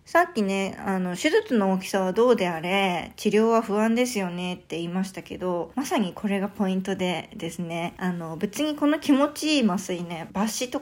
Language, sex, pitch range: Japanese, female, 185-235 Hz